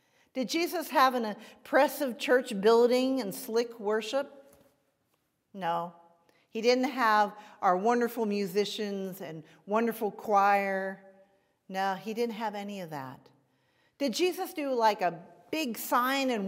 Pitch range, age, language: 165-235 Hz, 50-69, English